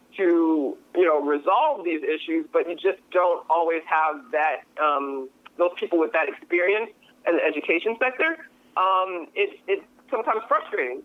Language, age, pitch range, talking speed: English, 30-49, 165-270 Hz, 150 wpm